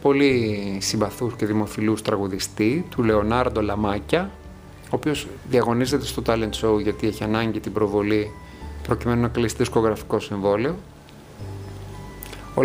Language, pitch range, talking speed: Greek, 100-130 Hz, 120 wpm